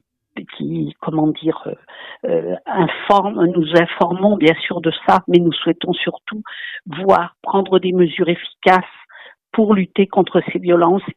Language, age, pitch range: French, 50-69, 170-200 Hz